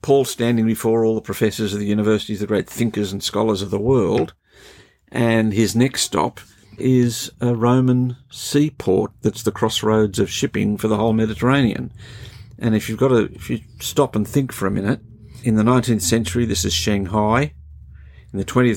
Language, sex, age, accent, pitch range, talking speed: English, male, 50-69, Australian, 100-115 Hz, 180 wpm